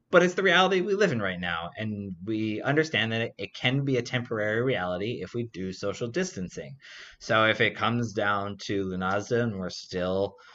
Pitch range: 95-125 Hz